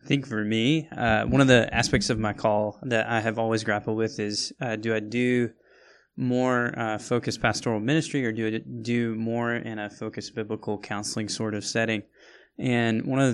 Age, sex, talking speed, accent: 20-39, male, 200 wpm, American